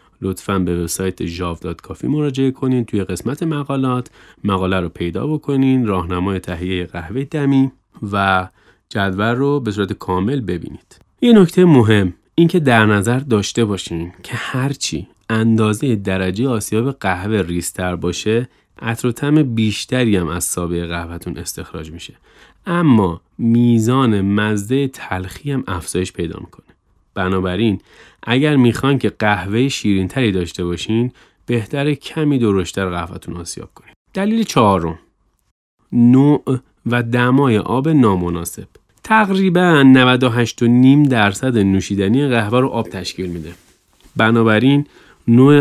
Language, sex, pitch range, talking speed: Persian, male, 95-130 Hz, 115 wpm